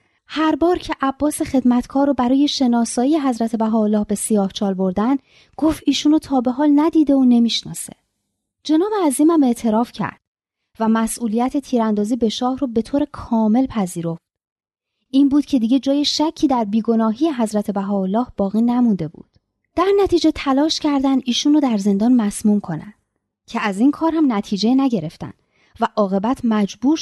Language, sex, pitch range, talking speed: Persian, female, 210-285 Hz, 145 wpm